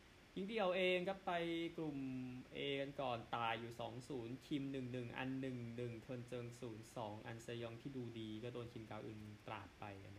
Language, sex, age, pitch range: Thai, male, 20-39, 115-145 Hz